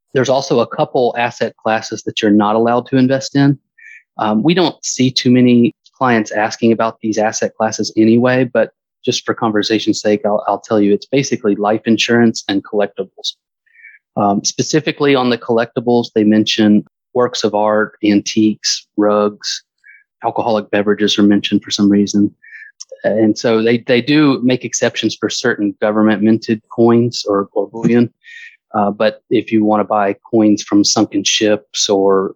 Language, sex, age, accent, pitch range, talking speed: English, male, 30-49, American, 105-120 Hz, 160 wpm